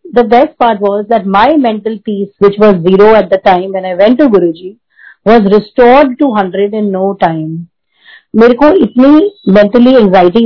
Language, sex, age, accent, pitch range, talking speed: Hindi, female, 30-49, native, 195-245 Hz, 180 wpm